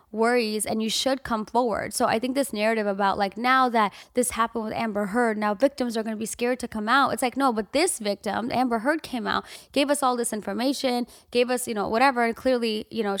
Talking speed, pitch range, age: 245 wpm, 210-255 Hz, 10-29